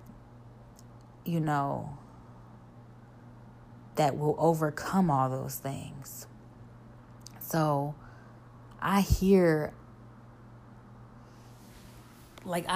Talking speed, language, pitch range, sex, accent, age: 55 wpm, English, 120-155 Hz, female, American, 20-39